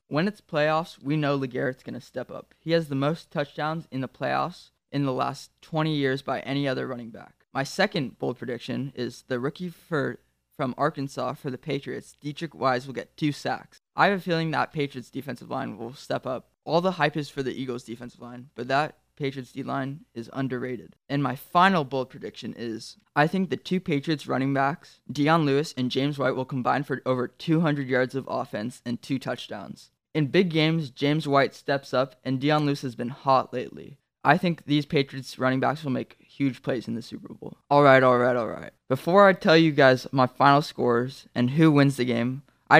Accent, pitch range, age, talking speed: American, 125-150 Hz, 20-39, 205 wpm